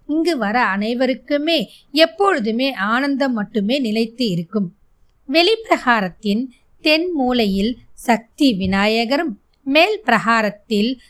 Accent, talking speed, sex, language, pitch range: native, 80 wpm, female, Tamil, 215-285 Hz